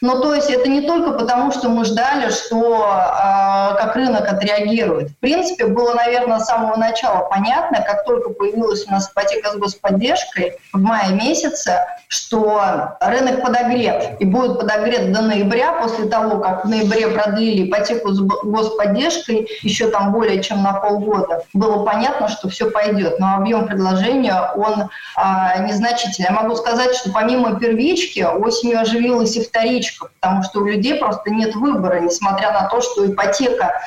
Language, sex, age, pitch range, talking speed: Russian, female, 20-39, 195-235 Hz, 160 wpm